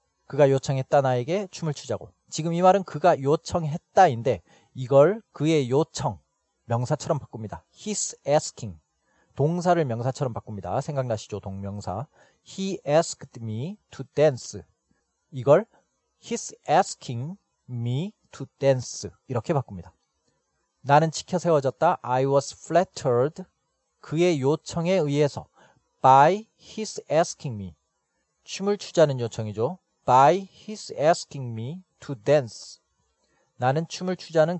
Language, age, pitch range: Korean, 40-59, 120-165 Hz